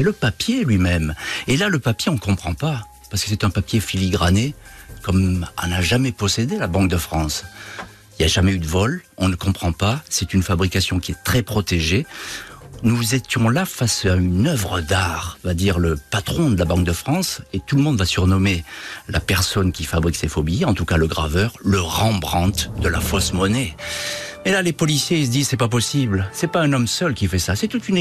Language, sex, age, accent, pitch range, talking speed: French, male, 50-69, French, 90-120 Hz, 225 wpm